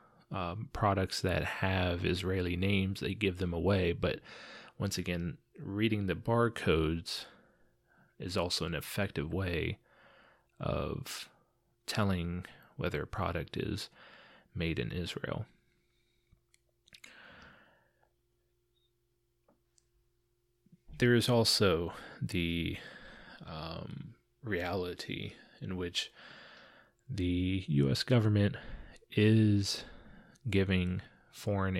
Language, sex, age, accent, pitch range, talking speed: English, male, 30-49, American, 95-115 Hz, 85 wpm